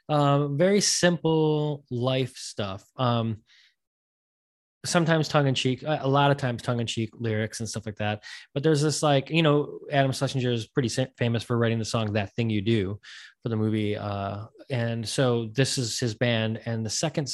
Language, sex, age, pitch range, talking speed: English, male, 20-39, 110-130 Hz, 185 wpm